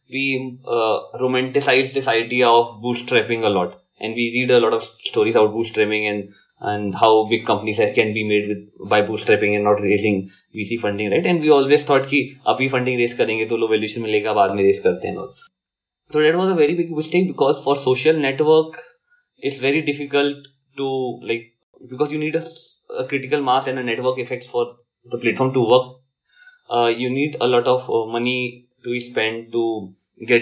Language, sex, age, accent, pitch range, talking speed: English, male, 20-39, Indian, 115-145 Hz, 180 wpm